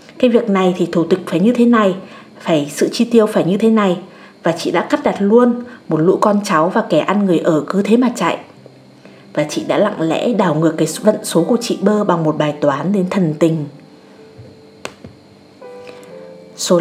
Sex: female